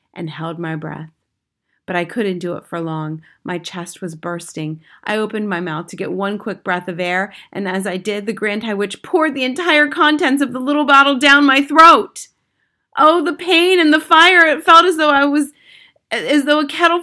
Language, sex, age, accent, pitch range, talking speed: English, female, 30-49, American, 215-290 Hz, 215 wpm